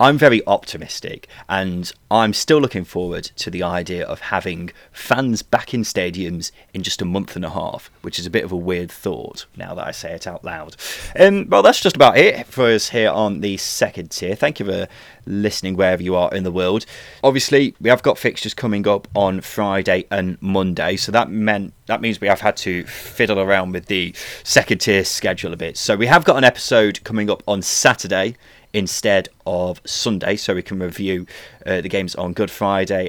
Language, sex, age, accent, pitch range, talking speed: English, male, 30-49, British, 90-115 Hz, 205 wpm